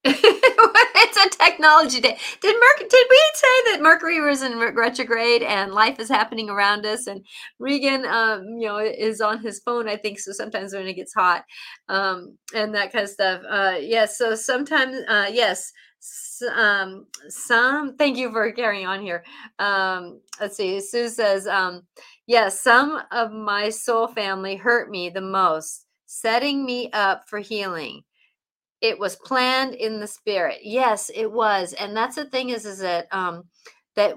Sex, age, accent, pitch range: female, 40-59, American, 205-275 Hz